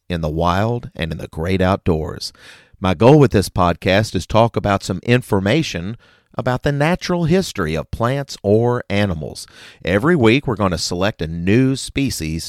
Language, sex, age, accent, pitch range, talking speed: English, male, 40-59, American, 90-130 Hz, 170 wpm